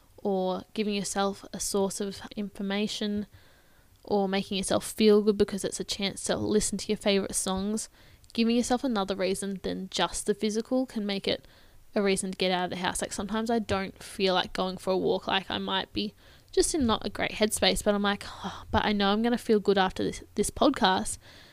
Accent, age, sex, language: Australian, 10-29, female, English